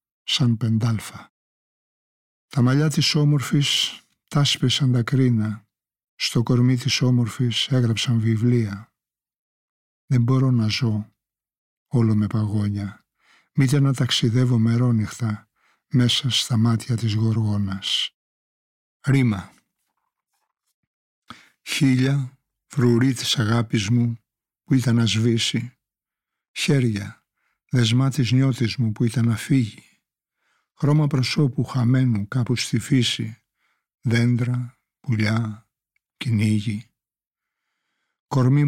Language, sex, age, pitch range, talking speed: Greek, male, 60-79, 110-130 Hz, 90 wpm